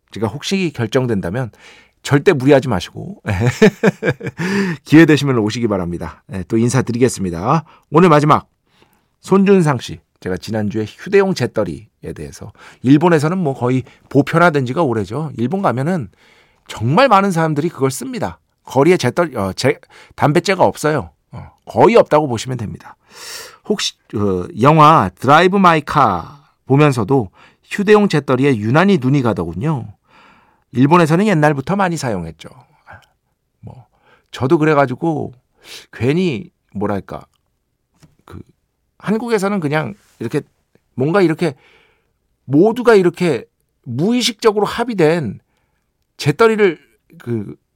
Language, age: Korean, 40-59